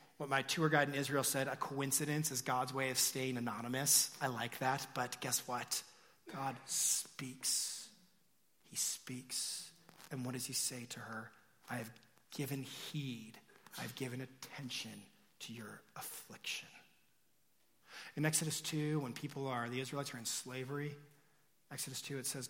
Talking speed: 155 wpm